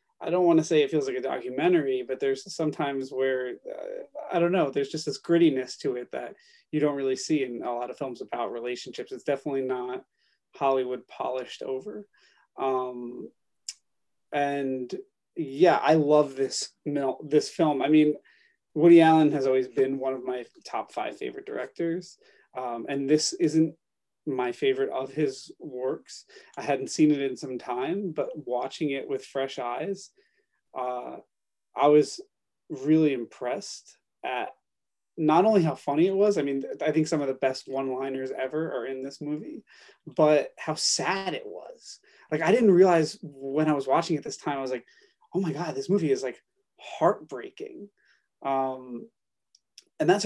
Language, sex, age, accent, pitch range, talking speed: English, male, 30-49, American, 135-195 Hz, 170 wpm